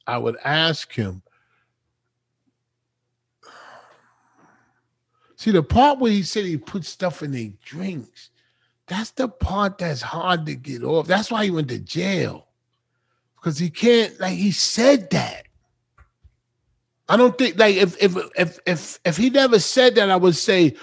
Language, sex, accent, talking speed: English, male, American, 155 wpm